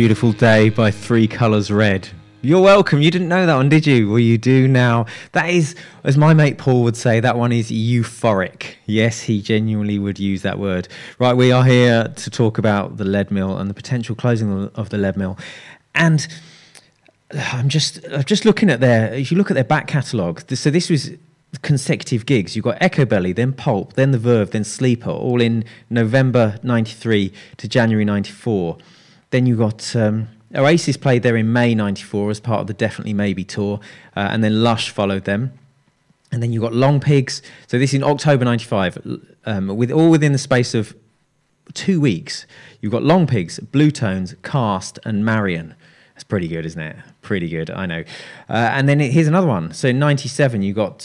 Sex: male